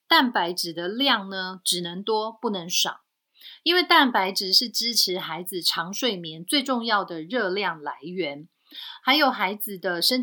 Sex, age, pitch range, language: female, 30-49, 185-255 Hz, Chinese